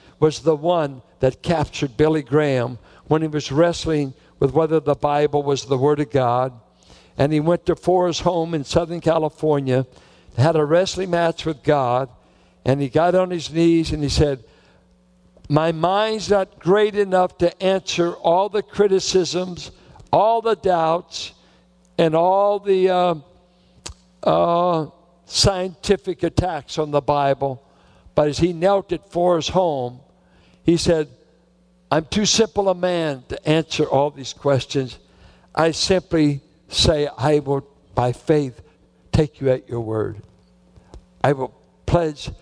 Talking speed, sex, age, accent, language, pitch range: 145 wpm, male, 60-79, American, English, 130-170 Hz